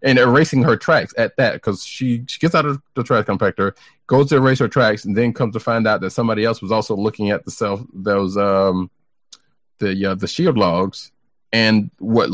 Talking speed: 215 wpm